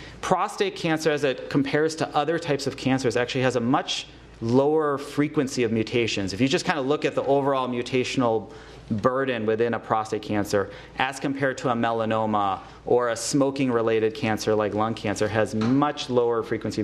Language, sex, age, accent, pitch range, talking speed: English, male, 30-49, American, 115-145 Hz, 175 wpm